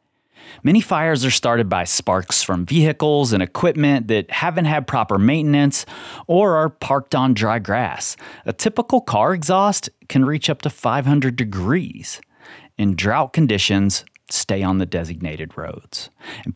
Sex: male